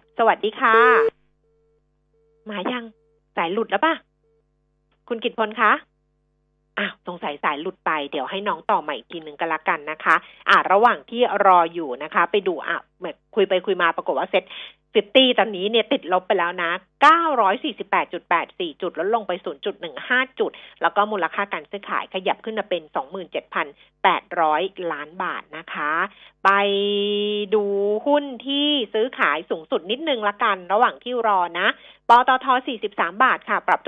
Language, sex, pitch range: Thai, female, 175-245 Hz